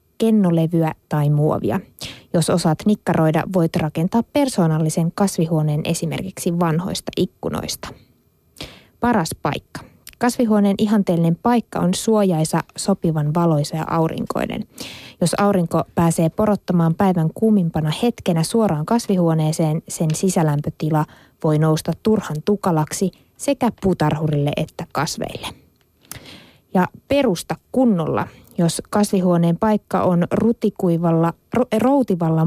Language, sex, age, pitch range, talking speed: Finnish, female, 20-39, 160-205 Hz, 95 wpm